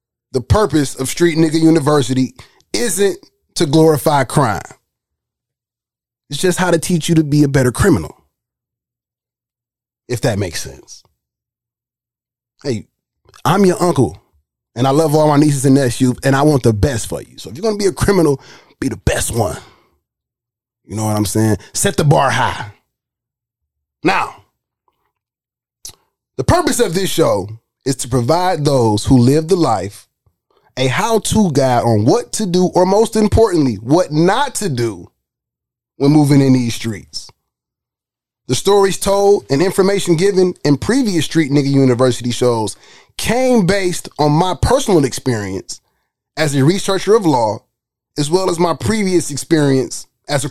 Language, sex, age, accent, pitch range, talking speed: English, male, 20-39, American, 120-170 Hz, 155 wpm